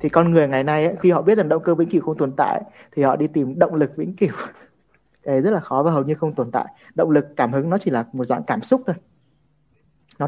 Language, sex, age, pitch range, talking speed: Vietnamese, male, 20-39, 140-185 Hz, 290 wpm